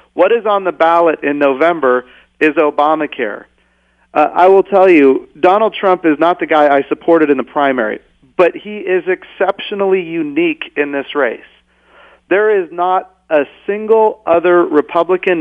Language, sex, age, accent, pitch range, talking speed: English, male, 40-59, American, 150-195 Hz, 155 wpm